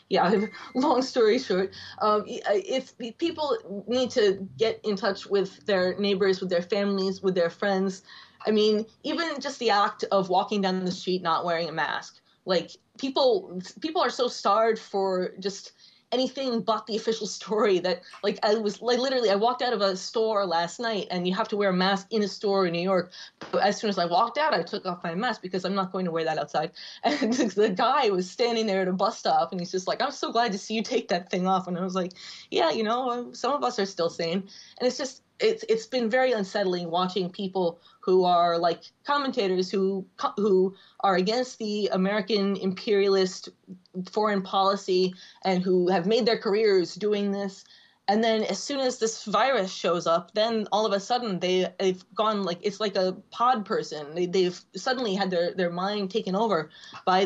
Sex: female